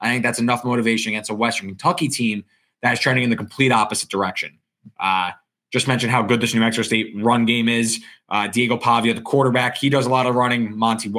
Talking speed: 225 wpm